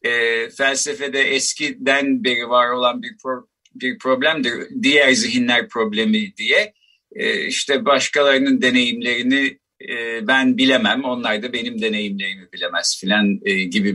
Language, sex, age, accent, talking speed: Turkish, male, 50-69, native, 125 wpm